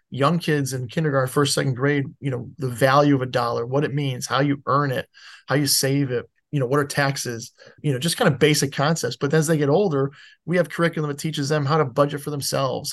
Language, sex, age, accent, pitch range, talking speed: English, male, 20-39, American, 130-150 Hz, 245 wpm